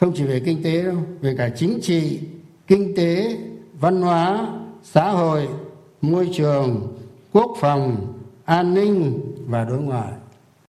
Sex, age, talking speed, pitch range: male, 60-79, 140 wpm, 140-190 Hz